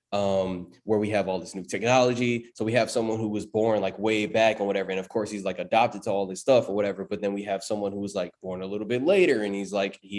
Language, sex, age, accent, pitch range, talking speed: English, male, 20-39, American, 100-120 Hz, 290 wpm